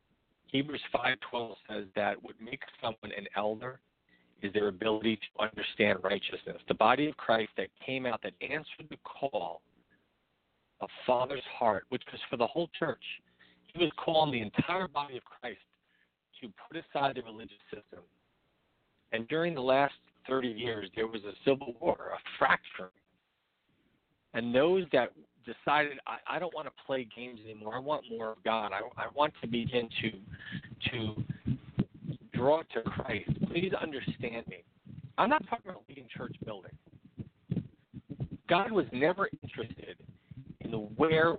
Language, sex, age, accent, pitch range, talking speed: English, male, 50-69, American, 110-140 Hz, 150 wpm